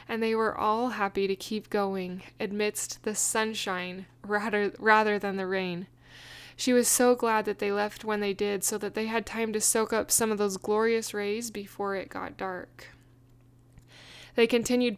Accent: American